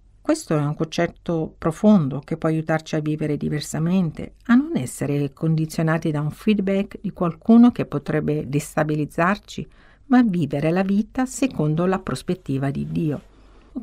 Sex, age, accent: female, 50-69, native